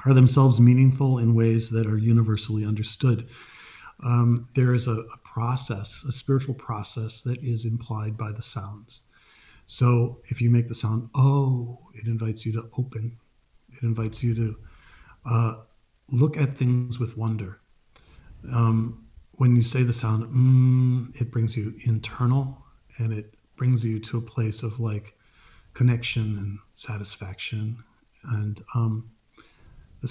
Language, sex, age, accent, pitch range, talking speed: English, male, 40-59, American, 110-125 Hz, 145 wpm